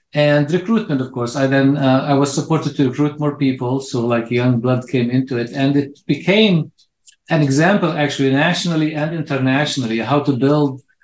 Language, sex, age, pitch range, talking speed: English, male, 50-69, 125-145 Hz, 180 wpm